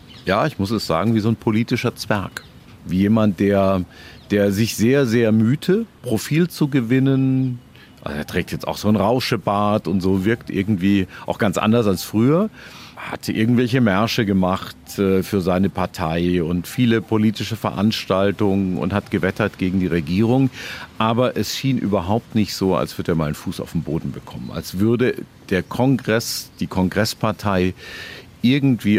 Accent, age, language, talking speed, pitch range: German, 50-69, German, 165 wpm, 90-120 Hz